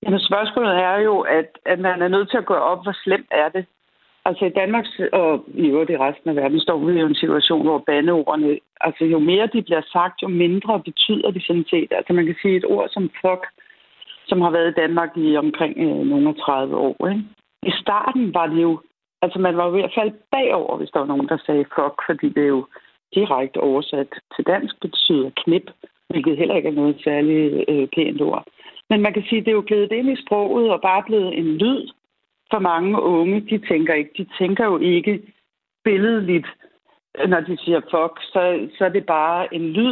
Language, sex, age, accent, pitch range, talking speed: Danish, female, 60-79, native, 165-210 Hz, 205 wpm